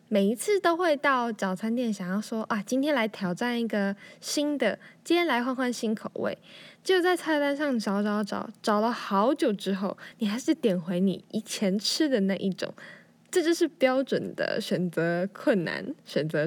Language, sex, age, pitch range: Chinese, female, 10-29, 195-260 Hz